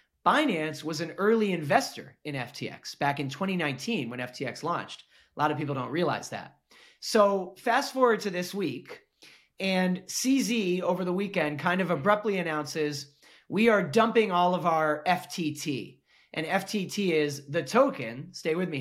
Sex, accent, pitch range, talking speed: male, American, 150-200 Hz, 160 wpm